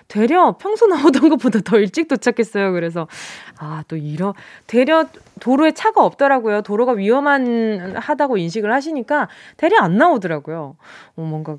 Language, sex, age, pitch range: Korean, female, 20-39, 195-275 Hz